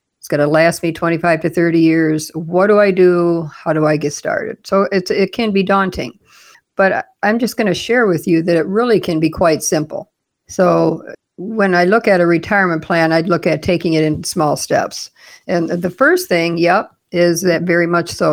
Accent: American